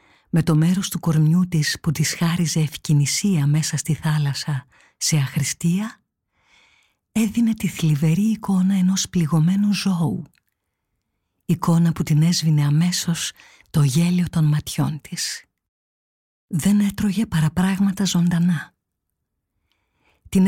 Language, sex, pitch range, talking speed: Greek, female, 155-200 Hz, 110 wpm